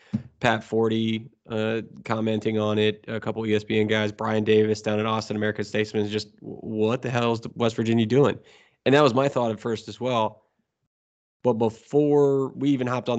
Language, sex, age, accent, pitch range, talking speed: English, male, 20-39, American, 105-120 Hz, 185 wpm